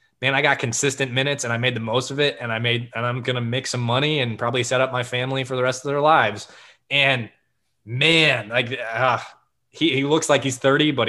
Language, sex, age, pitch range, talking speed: English, male, 20-39, 115-145 Hz, 240 wpm